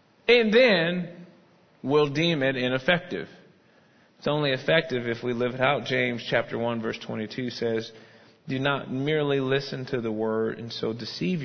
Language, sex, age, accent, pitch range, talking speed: English, male, 40-59, American, 120-175 Hz, 155 wpm